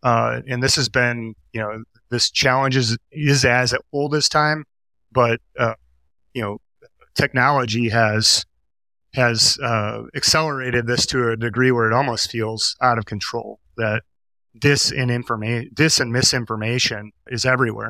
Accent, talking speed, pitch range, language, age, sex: American, 150 wpm, 110-130 Hz, English, 30-49, male